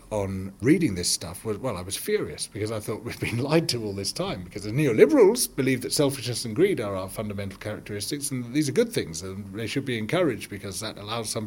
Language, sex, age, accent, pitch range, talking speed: English, male, 40-59, British, 100-135 Hz, 240 wpm